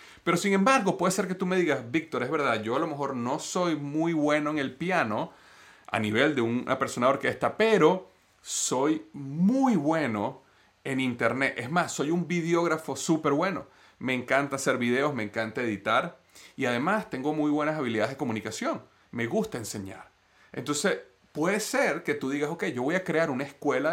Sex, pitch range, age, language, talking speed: male, 120-170 Hz, 30-49, Spanish, 185 wpm